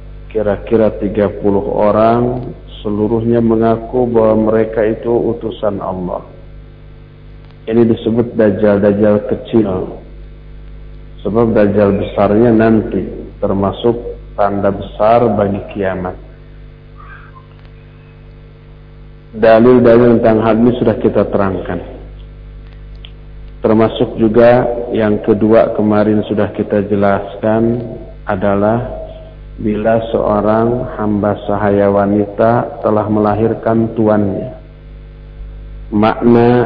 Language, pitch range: Indonesian, 100-120 Hz